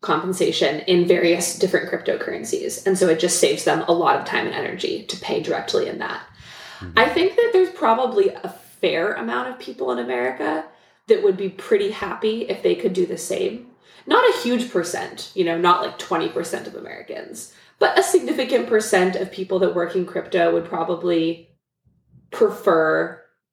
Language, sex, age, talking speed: English, female, 20-39, 175 wpm